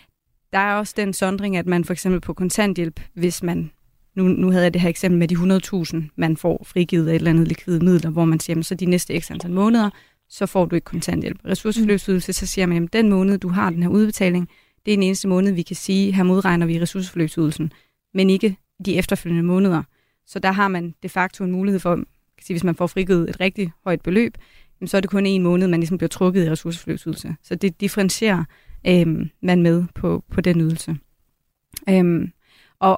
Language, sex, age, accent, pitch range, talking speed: Danish, female, 30-49, native, 170-190 Hz, 215 wpm